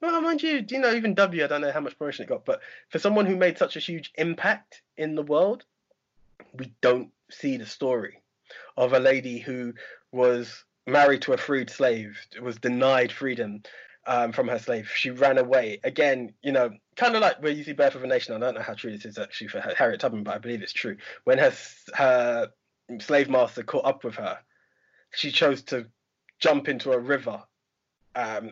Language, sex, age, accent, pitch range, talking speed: English, male, 20-39, British, 120-155 Hz, 205 wpm